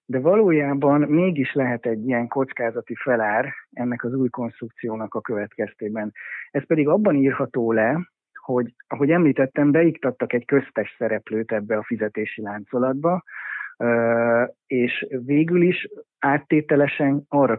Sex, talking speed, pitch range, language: male, 120 wpm, 110-140 Hz, Hungarian